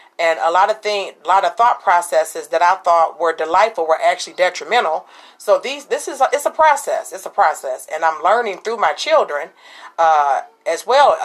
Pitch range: 165-205 Hz